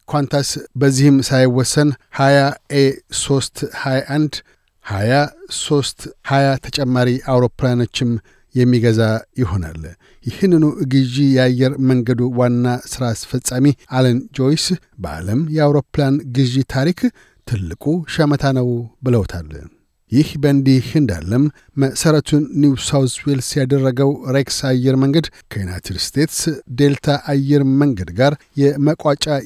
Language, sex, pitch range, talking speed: Amharic, male, 125-145 Hz, 90 wpm